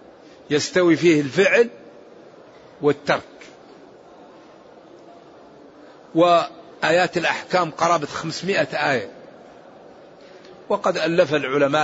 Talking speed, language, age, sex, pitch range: 60 wpm, Arabic, 50-69, male, 150-180 Hz